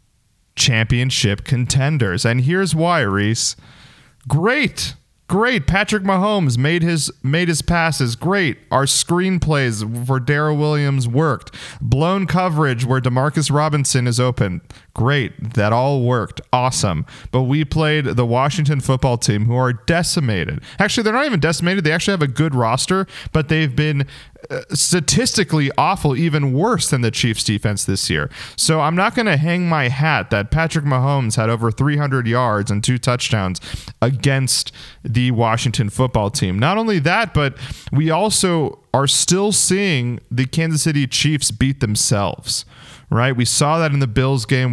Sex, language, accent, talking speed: male, English, American, 155 wpm